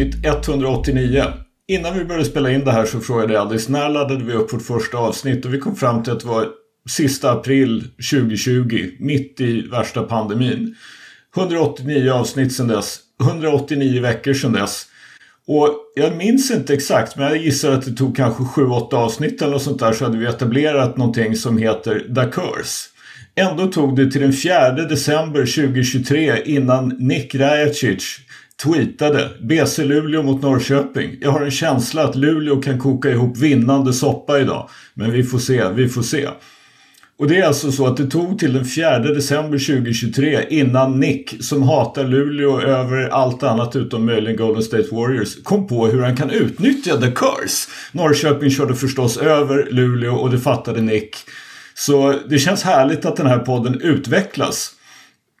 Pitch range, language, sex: 125-145 Hz, Swedish, male